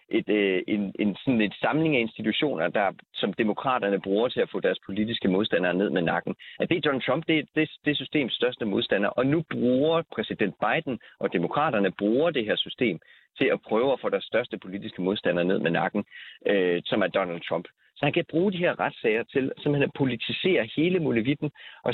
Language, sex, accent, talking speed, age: Danish, male, native, 200 wpm, 30-49